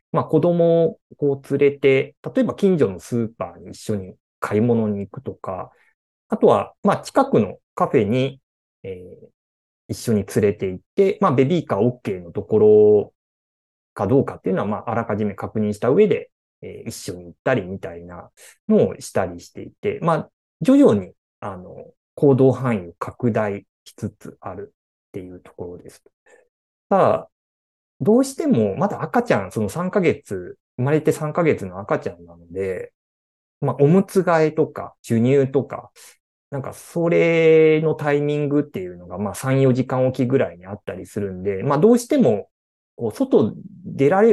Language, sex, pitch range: Japanese, male, 95-155 Hz